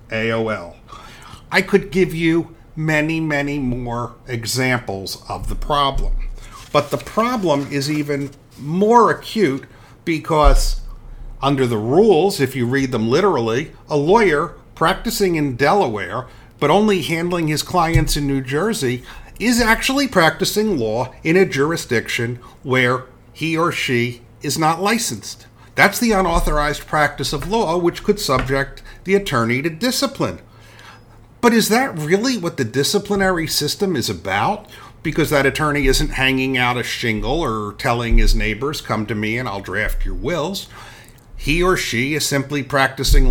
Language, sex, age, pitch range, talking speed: English, male, 50-69, 115-160 Hz, 145 wpm